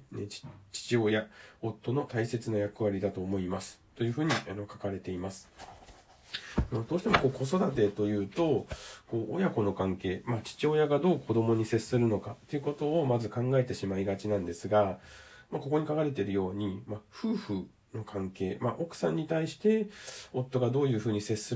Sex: male